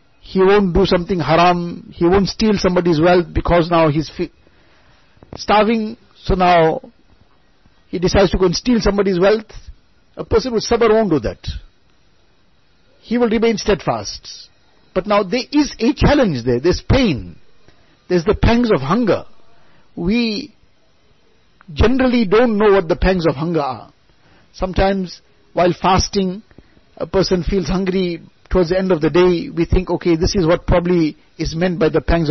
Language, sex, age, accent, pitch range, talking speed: English, male, 50-69, Indian, 170-205 Hz, 160 wpm